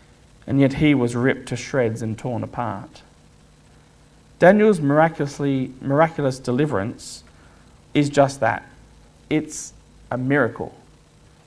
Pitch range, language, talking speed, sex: 130-180 Hz, English, 105 wpm, male